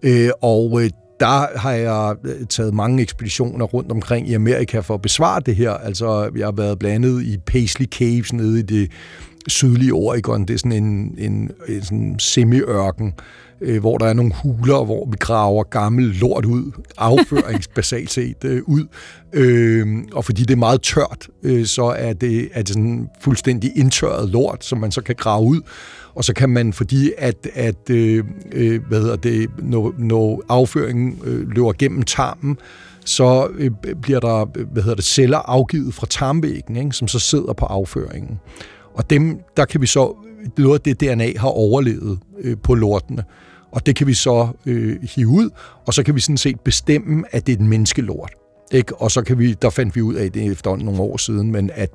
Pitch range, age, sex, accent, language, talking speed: 110-130 Hz, 60-79, male, native, Danish, 185 wpm